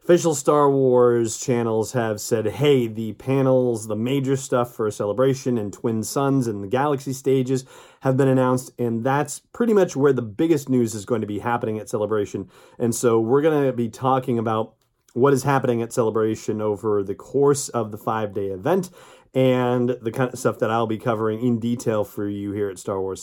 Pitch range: 110-140 Hz